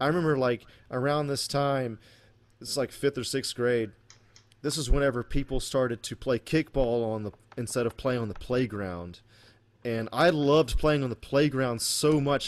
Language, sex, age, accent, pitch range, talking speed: English, male, 30-49, American, 110-130 Hz, 180 wpm